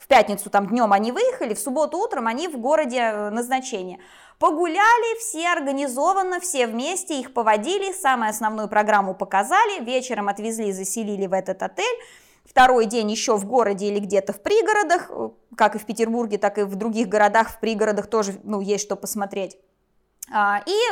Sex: female